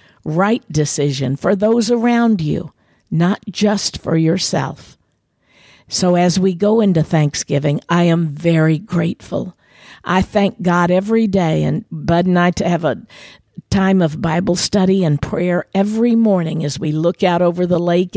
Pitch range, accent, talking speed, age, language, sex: 165-205 Hz, American, 155 wpm, 50-69, English, female